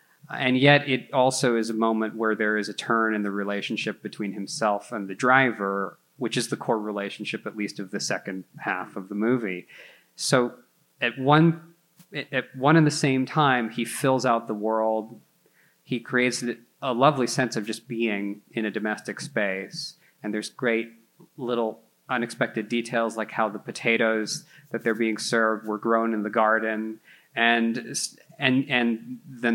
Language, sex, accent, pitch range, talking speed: English, male, American, 110-130 Hz, 170 wpm